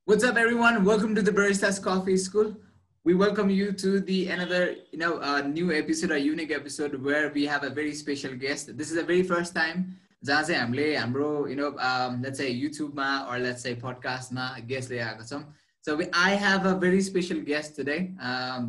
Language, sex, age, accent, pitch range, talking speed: English, male, 20-39, Indian, 130-165 Hz, 195 wpm